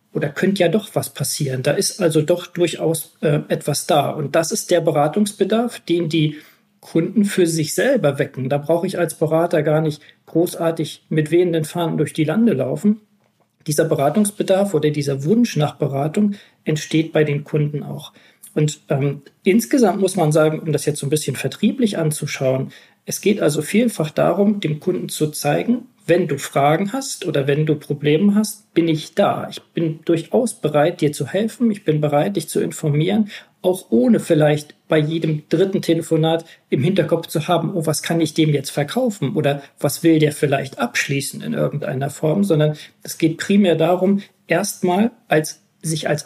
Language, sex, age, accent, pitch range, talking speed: German, male, 40-59, German, 150-190 Hz, 180 wpm